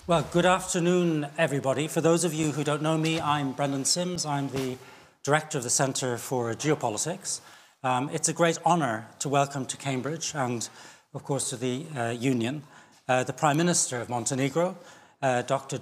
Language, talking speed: English, 180 wpm